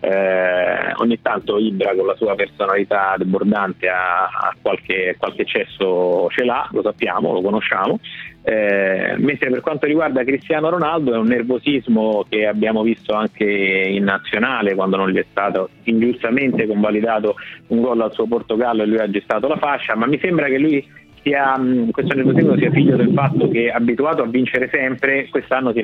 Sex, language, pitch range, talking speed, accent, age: male, Italian, 105-130 Hz, 165 wpm, native, 30-49